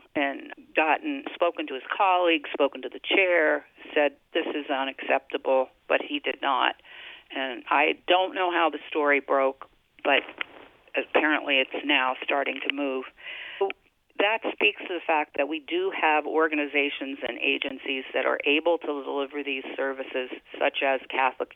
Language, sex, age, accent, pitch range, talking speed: English, female, 50-69, American, 135-170 Hz, 155 wpm